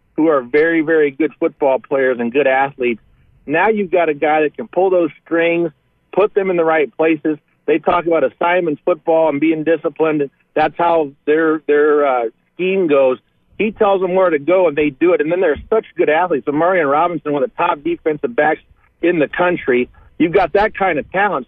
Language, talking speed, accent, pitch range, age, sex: English, 210 wpm, American, 155-185 Hz, 50-69, male